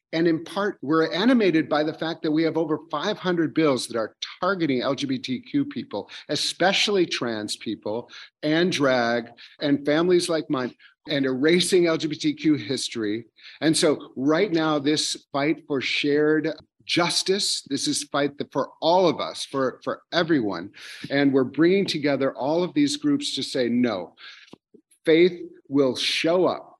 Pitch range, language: 130-170 Hz, English